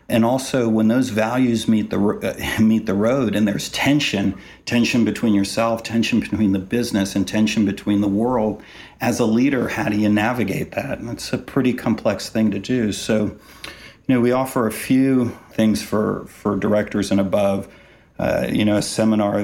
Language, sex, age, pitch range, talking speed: English, male, 50-69, 100-110 Hz, 185 wpm